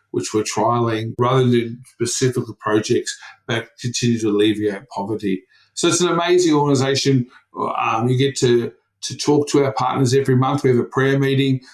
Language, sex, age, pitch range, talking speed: English, male, 50-69, 120-145 Hz, 165 wpm